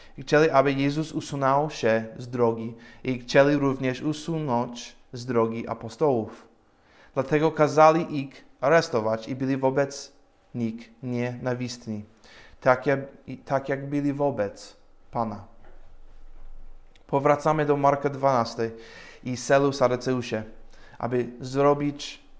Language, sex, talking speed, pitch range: Polish, male, 100 wpm, 120-145 Hz